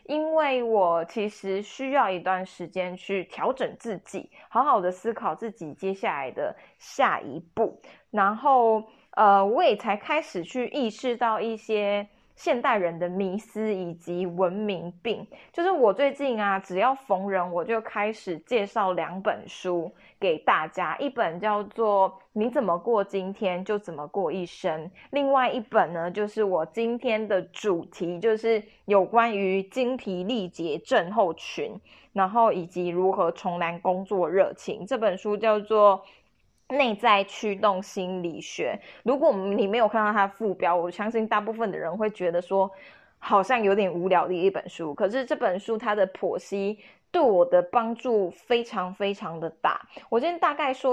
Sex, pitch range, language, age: female, 185-230 Hz, Chinese, 20-39